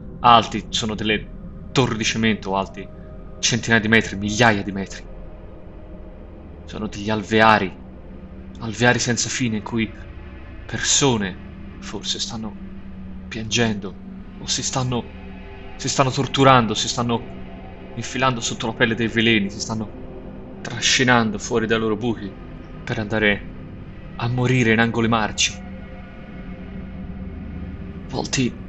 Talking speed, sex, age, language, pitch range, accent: 115 wpm, male, 30-49, Italian, 90-115 Hz, native